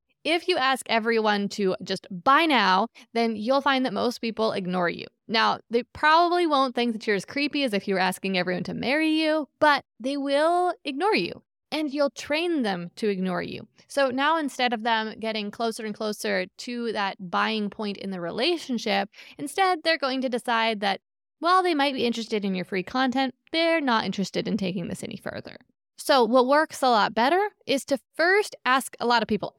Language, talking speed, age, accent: English, 200 wpm, 20-39, American